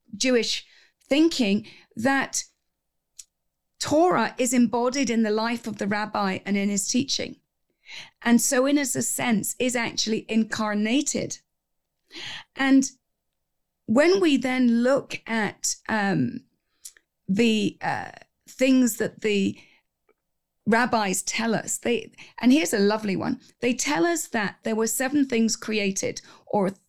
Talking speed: 125 wpm